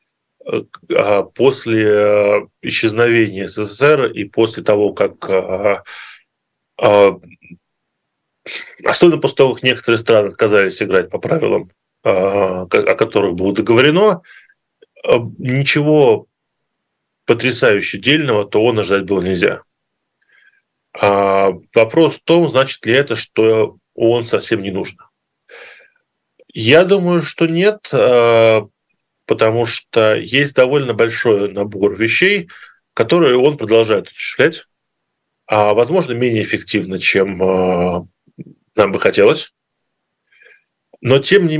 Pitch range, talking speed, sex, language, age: 105-170 Hz, 95 wpm, male, Russian, 20-39